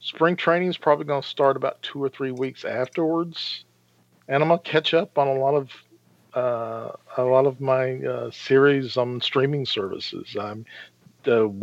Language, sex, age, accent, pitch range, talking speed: English, male, 50-69, American, 120-145 Hz, 175 wpm